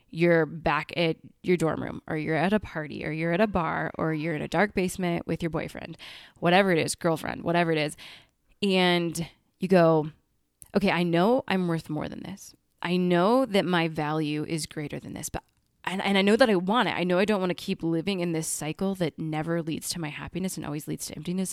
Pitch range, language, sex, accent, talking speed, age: 160-205 Hz, English, female, American, 230 wpm, 20-39